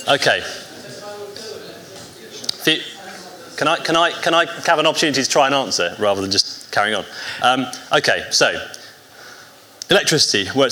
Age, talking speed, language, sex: 30-49, 140 wpm, English, male